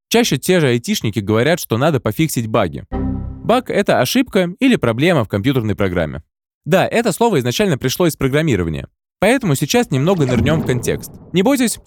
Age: 20-39